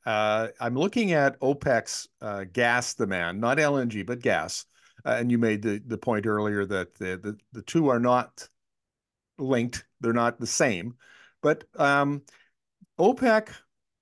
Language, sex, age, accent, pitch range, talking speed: English, male, 50-69, American, 115-150 Hz, 175 wpm